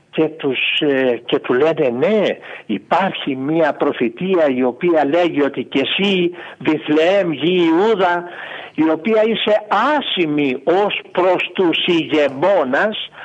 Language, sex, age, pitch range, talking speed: Greek, male, 60-79, 145-195 Hz, 120 wpm